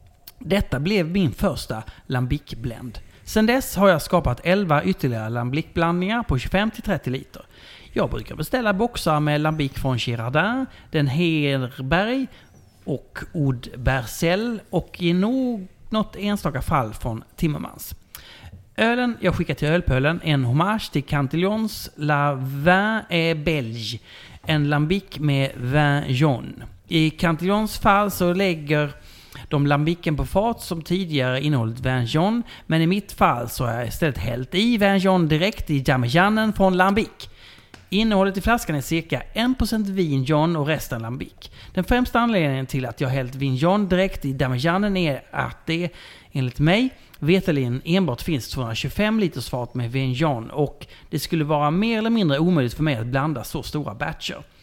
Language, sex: Swedish, male